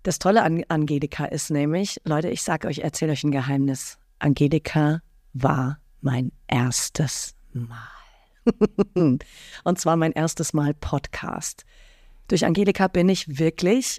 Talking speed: 130 wpm